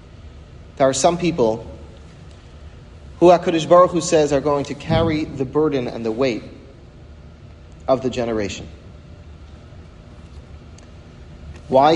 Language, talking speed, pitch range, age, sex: English, 110 wpm, 105-155 Hz, 40-59, male